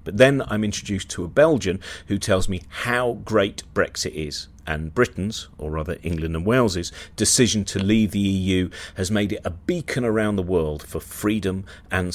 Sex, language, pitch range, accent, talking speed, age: male, English, 80-105 Hz, British, 185 wpm, 40-59